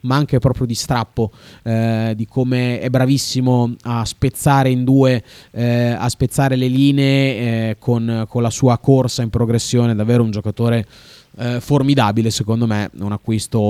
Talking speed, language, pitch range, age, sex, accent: 160 wpm, Italian, 105-130 Hz, 20-39, male, native